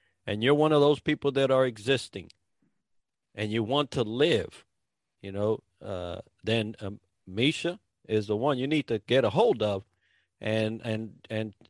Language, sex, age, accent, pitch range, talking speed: English, male, 50-69, American, 110-140 Hz, 170 wpm